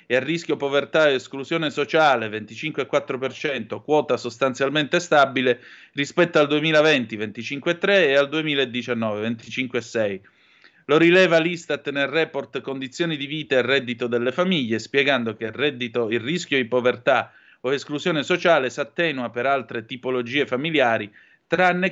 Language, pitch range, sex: Italian, 120-160 Hz, male